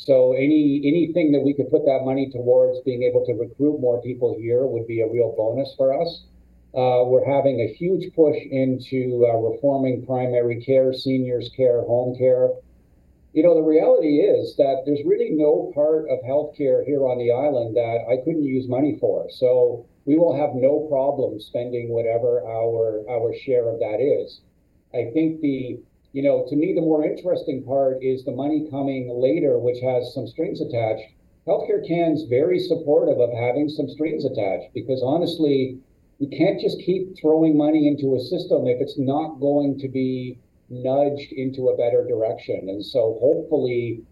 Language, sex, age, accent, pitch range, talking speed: English, male, 50-69, American, 125-155 Hz, 180 wpm